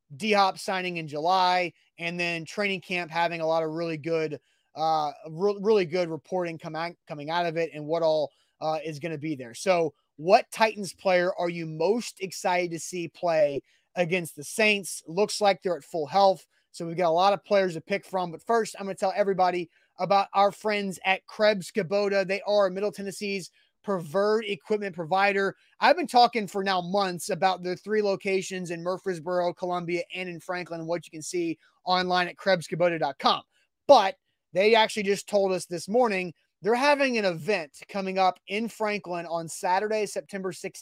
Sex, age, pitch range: male, 30-49, 170-205 Hz